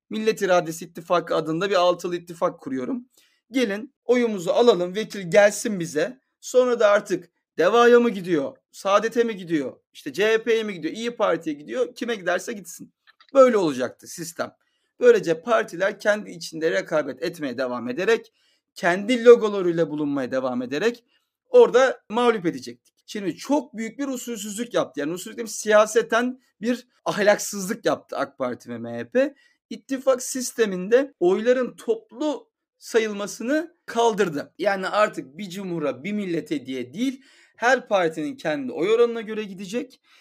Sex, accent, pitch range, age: male, native, 185-250 Hz, 40-59